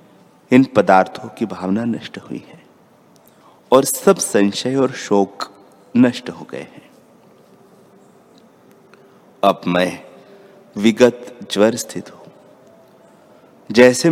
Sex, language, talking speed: male, Hindi, 100 wpm